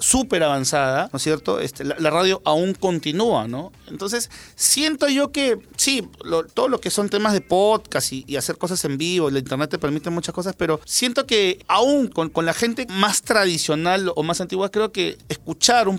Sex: male